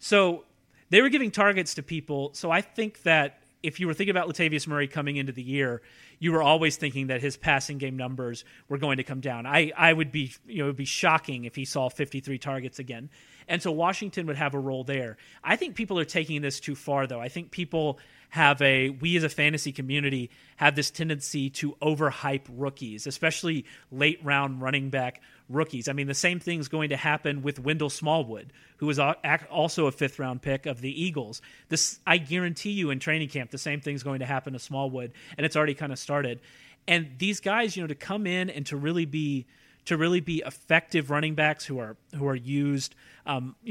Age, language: 30-49, English